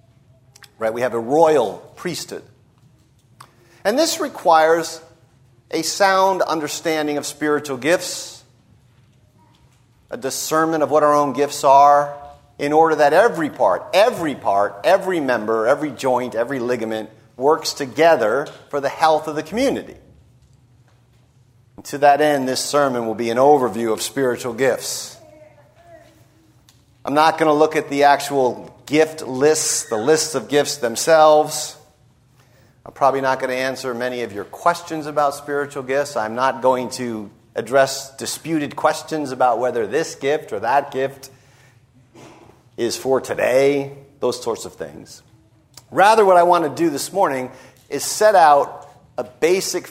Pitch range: 125-155 Hz